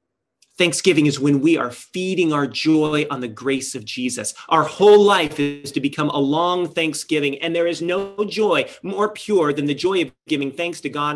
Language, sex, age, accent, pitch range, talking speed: English, male, 30-49, American, 140-180 Hz, 200 wpm